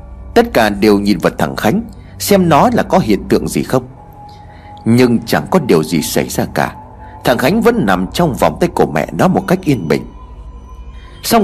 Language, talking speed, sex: Vietnamese, 200 wpm, male